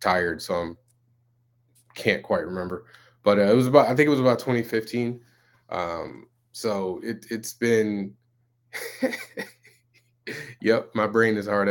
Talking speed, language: 140 wpm, English